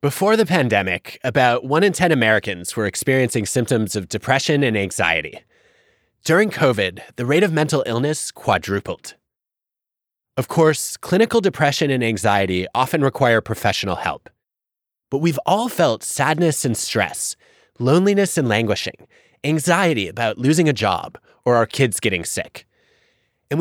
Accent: American